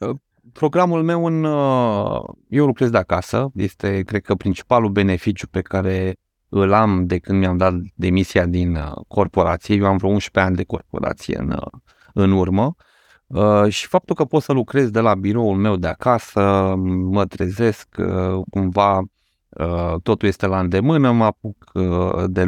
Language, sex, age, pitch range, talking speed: Romanian, male, 30-49, 95-110 Hz, 145 wpm